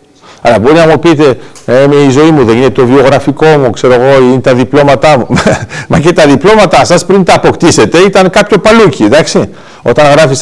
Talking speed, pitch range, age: 195 wpm, 140-190 Hz, 50-69